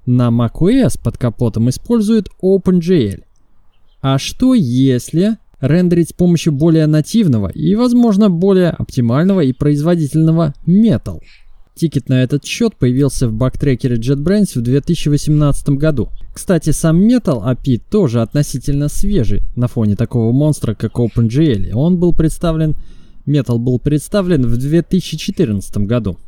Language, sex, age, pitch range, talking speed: Russian, male, 20-39, 120-170 Hz, 125 wpm